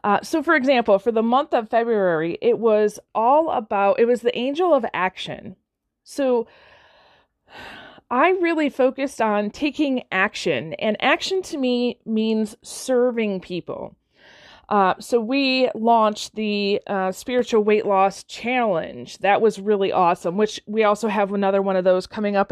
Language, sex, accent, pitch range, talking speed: English, female, American, 195-255 Hz, 150 wpm